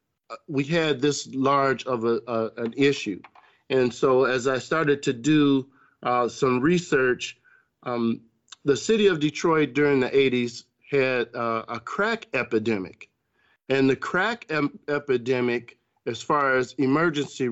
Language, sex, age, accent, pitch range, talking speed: English, male, 50-69, American, 120-145 Hz, 140 wpm